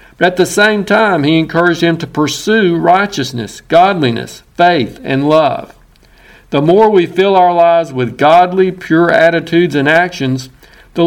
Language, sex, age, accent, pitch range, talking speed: English, male, 50-69, American, 140-180 Hz, 145 wpm